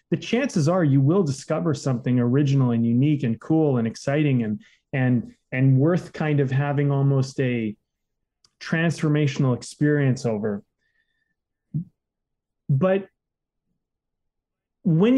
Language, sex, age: English, male, 30-49